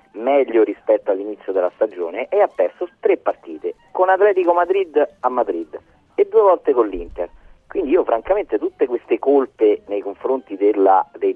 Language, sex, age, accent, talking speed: Italian, male, 40-59, native, 160 wpm